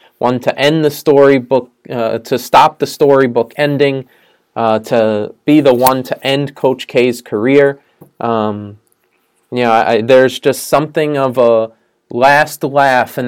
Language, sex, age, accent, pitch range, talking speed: English, male, 20-39, American, 120-155 Hz, 135 wpm